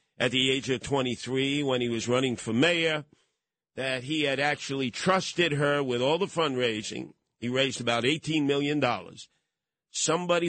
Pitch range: 125-155 Hz